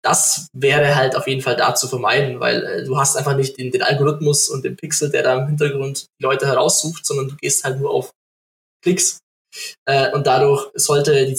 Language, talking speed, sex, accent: German, 210 wpm, male, German